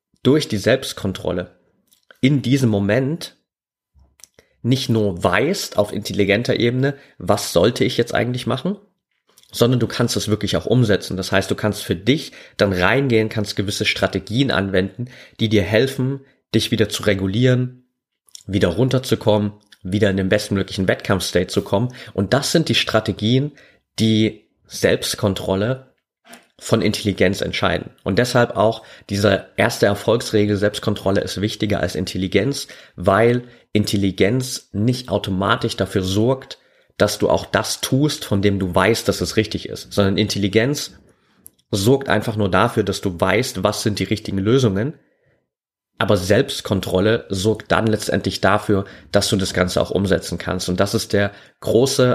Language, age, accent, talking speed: German, 30-49, German, 145 wpm